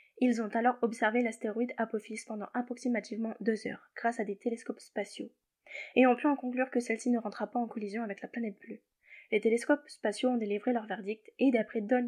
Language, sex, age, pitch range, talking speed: French, female, 10-29, 220-265 Hz, 205 wpm